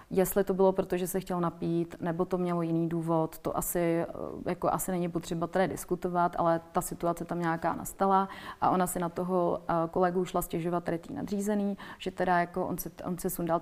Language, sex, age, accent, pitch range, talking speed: Czech, female, 30-49, native, 170-185 Hz, 195 wpm